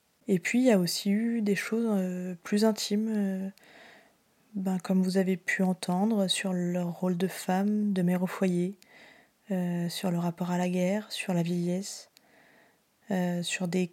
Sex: female